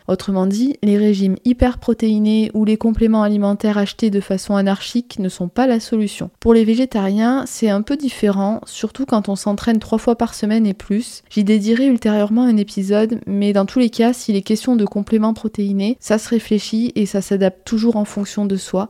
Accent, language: French, French